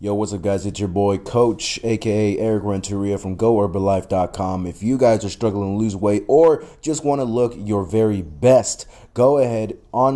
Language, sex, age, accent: English, male, 30-49, American